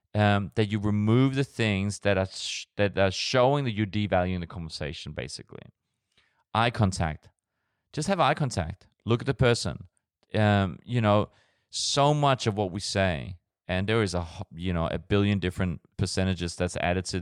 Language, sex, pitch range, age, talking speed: English, male, 95-110 Hz, 30-49, 175 wpm